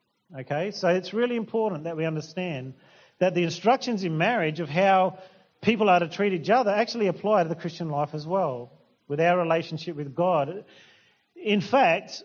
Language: English